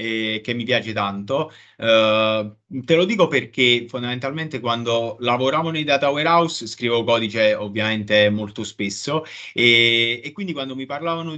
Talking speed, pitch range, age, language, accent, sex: 140 wpm, 115-155 Hz, 30-49, Italian, native, male